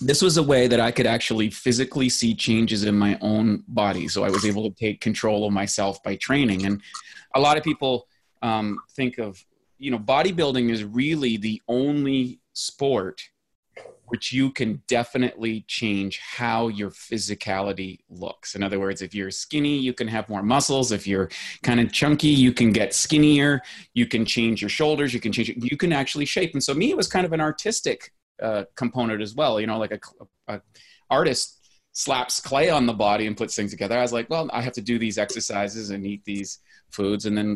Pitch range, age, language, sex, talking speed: 105-130 Hz, 30-49, English, male, 205 wpm